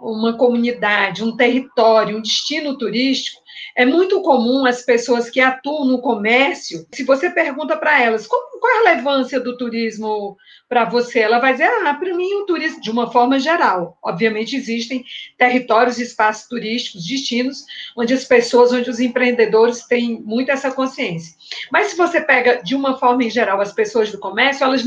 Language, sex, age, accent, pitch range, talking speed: Portuguese, female, 40-59, Brazilian, 225-275 Hz, 175 wpm